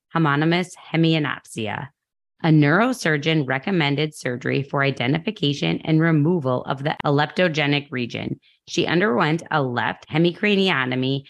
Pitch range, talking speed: 135-165 Hz, 100 wpm